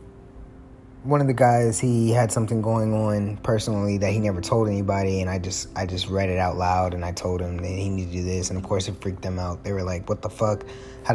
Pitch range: 95-125 Hz